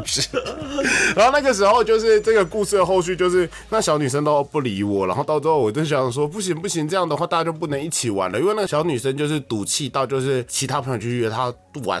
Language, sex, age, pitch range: Chinese, male, 20-39, 115-160 Hz